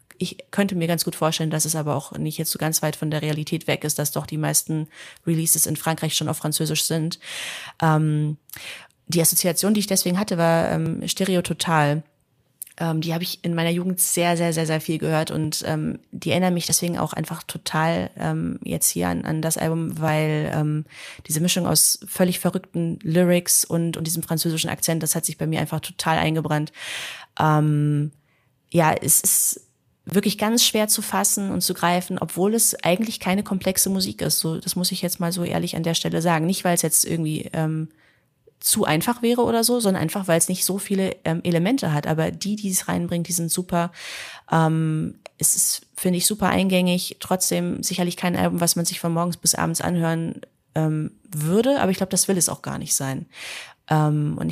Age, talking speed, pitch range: 30-49, 205 wpm, 155-180 Hz